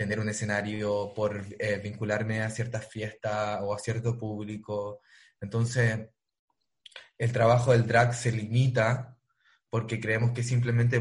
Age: 20-39